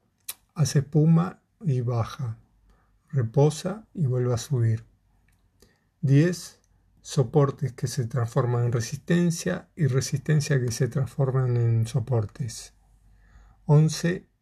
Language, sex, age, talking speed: Spanish, male, 50-69, 100 wpm